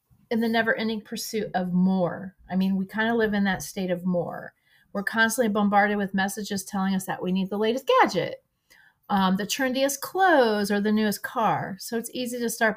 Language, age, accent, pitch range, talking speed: English, 30-49, American, 190-235 Hz, 200 wpm